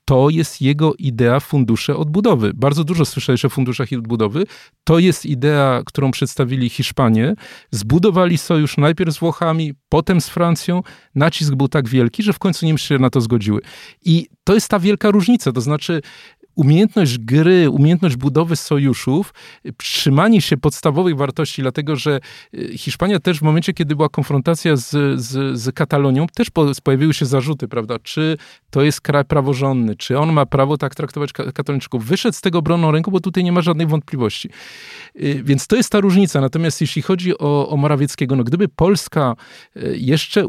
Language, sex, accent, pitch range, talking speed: Polish, male, native, 135-165 Hz, 170 wpm